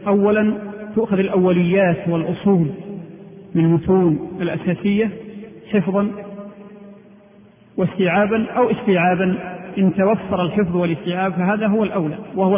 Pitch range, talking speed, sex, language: 185-210 Hz, 90 wpm, male, Arabic